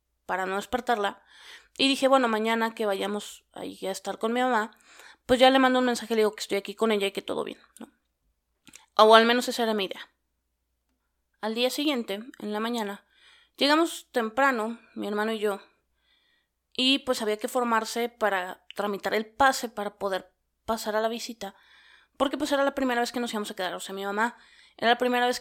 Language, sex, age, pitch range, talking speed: Spanish, female, 20-39, 205-255 Hz, 205 wpm